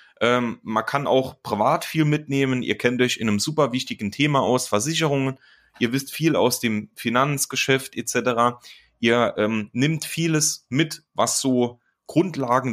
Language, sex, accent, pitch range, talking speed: German, male, German, 110-140 Hz, 145 wpm